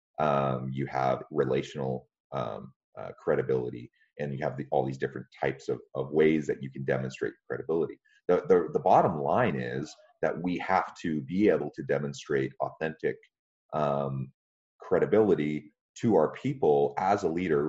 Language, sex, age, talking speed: English, male, 30-49, 155 wpm